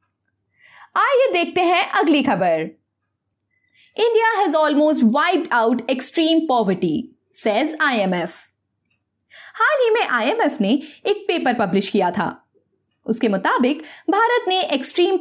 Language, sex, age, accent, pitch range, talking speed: Hindi, female, 20-39, native, 225-375 Hz, 115 wpm